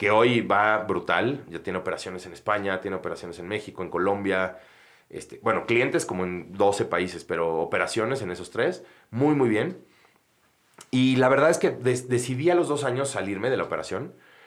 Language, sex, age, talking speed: Spanish, male, 30-49, 185 wpm